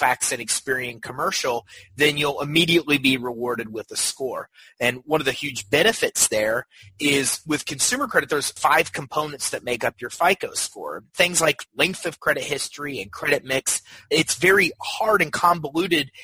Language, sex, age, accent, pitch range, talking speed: English, male, 30-49, American, 130-165 Hz, 170 wpm